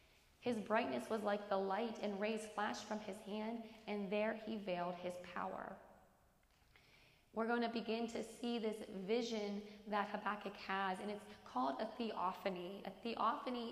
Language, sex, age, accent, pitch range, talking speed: English, female, 20-39, American, 195-220 Hz, 160 wpm